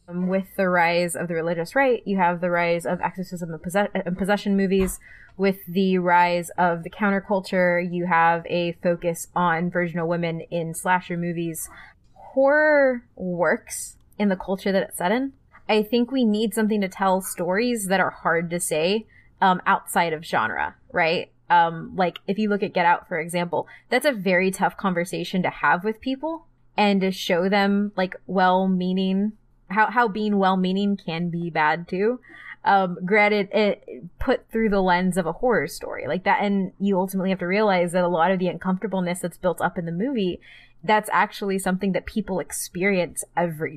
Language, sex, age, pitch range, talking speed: English, female, 20-39, 175-210 Hz, 180 wpm